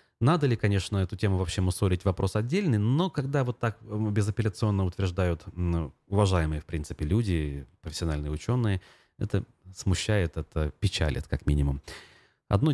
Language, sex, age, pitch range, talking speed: Russian, male, 30-49, 85-110 Hz, 130 wpm